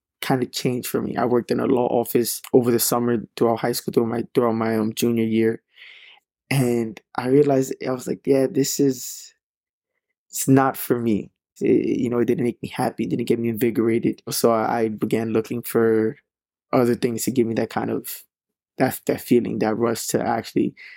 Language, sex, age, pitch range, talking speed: English, male, 20-39, 115-135 Hz, 205 wpm